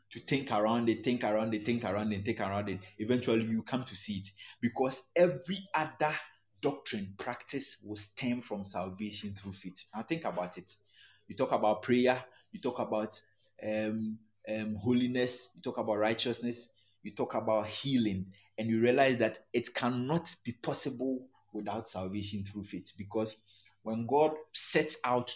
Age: 30-49